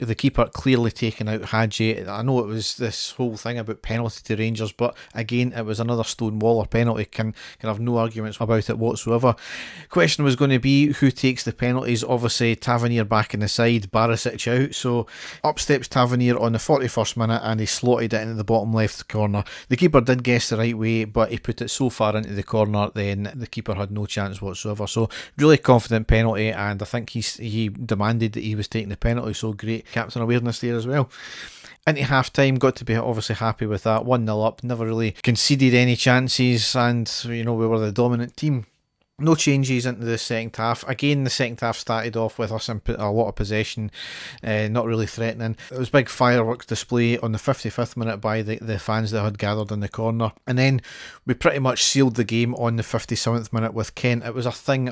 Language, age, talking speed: English, 40-59, 215 wpm